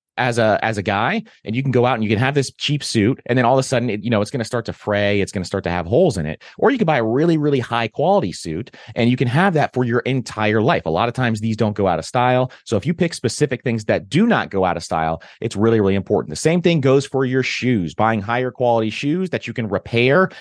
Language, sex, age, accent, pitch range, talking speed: English, male, 30-49, American, 105-140 Hz, 295 wpm